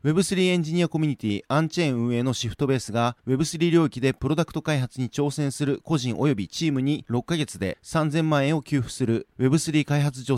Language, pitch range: Japanese, 125-160 Hz